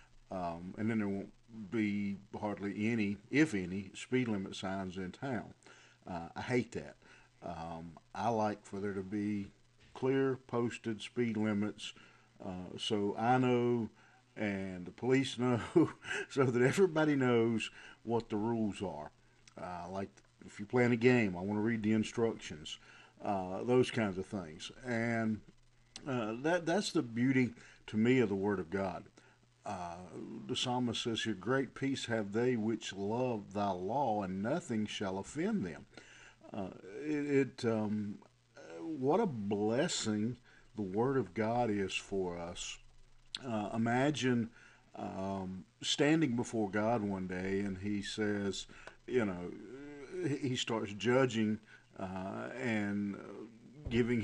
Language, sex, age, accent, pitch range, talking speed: English, male, 50-69, American, 100-125 Hz, 140 wpm